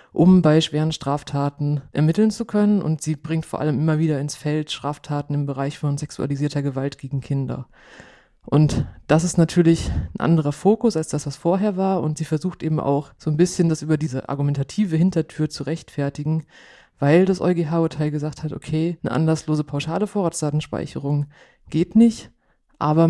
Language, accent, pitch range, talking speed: German, German, 145-175 Hz, 165 wpm